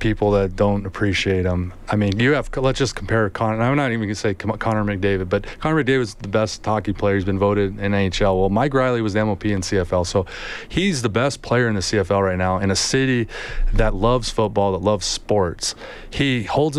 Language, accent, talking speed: English, American, 220 wpm